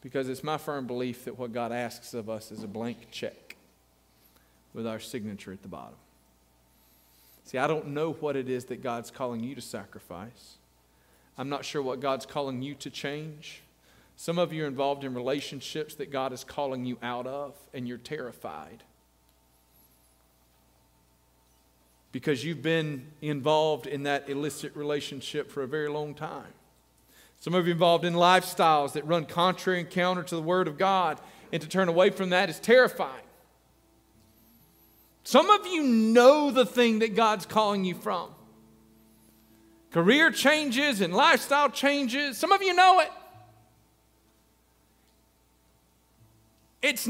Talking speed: 155 wpm